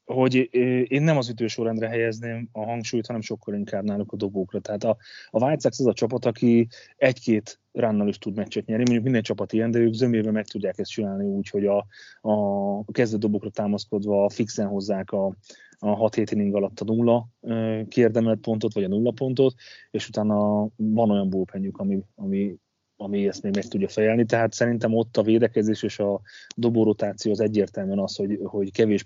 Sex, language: male, Hungarian